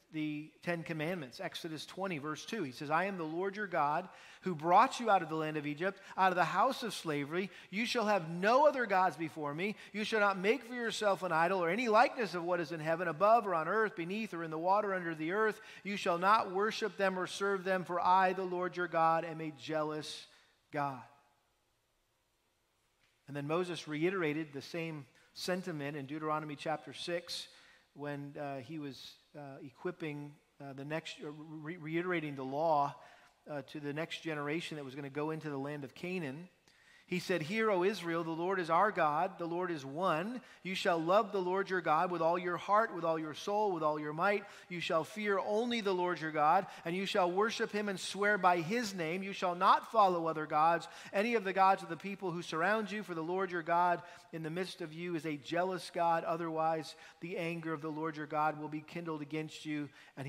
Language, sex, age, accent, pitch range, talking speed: English, male, 40-59, American, 150-190 Hz, 215 wpm